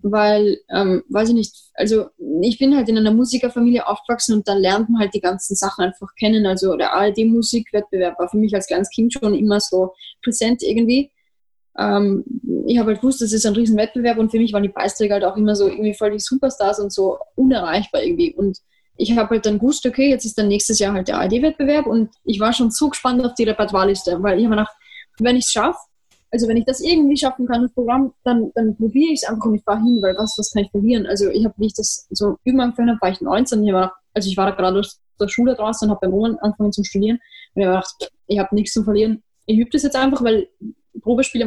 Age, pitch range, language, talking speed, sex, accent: 20-39, 205-250 Hz, German, 240 wpm, female, German